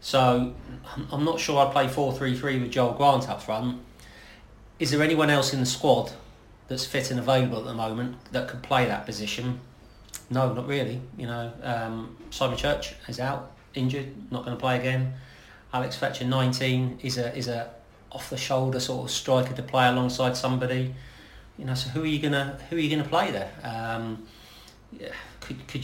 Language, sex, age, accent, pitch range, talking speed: English, male, 40-59, British, 125-140 Hz, 185 wpm